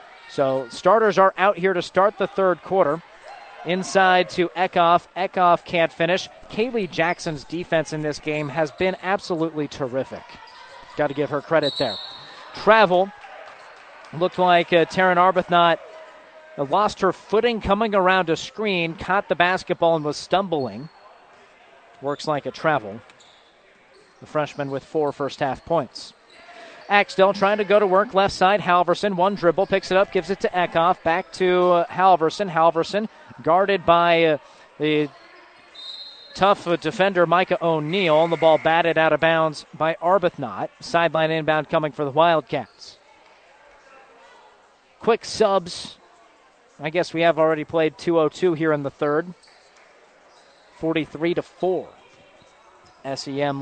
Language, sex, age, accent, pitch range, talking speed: English, male, 40-59, American, 155-190 Hz, 135 wpm